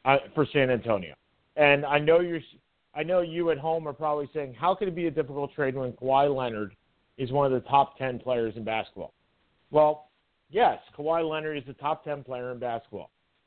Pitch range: 140-170 Hz